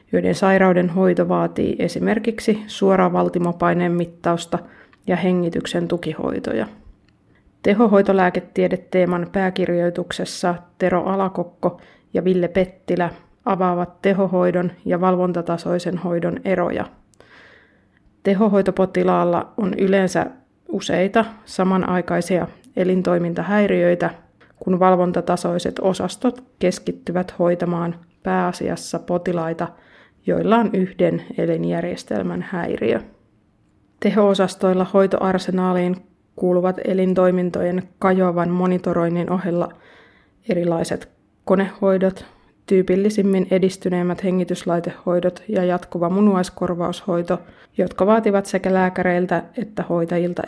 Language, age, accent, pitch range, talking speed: Finnish, 30-49, native, 175-190 Hz, 75 wpm